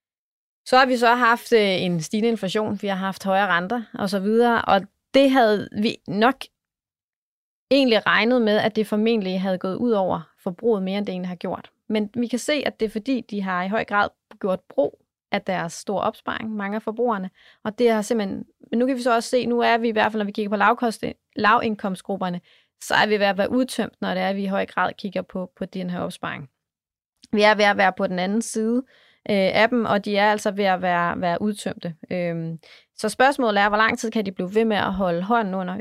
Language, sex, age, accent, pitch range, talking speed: Danish, female, 30-49, native, 190-230 Hz, 235 wpm